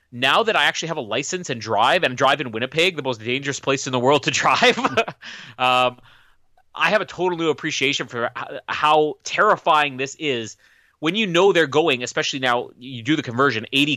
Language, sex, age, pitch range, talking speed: English, male, 30-49, 125-165 Hz, 200 wpm